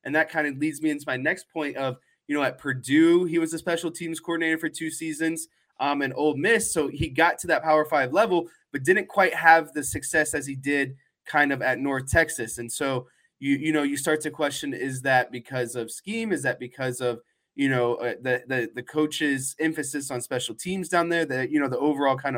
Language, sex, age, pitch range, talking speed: English, male, 20-39, 135-160 Hz, 230 wpm